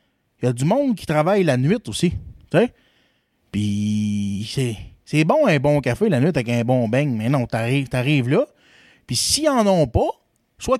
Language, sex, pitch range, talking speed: French, male, 125-185 Hz, 195 wpm